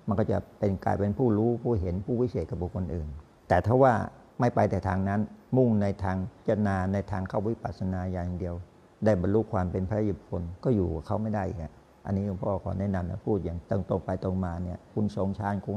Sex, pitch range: male, 95-115 Hz